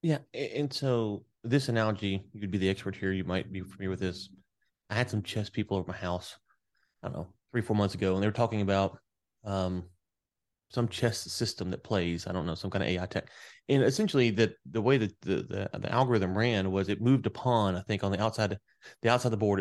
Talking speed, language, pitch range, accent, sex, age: 235 wpm, English, 100-125 Hz, American, male, 30-49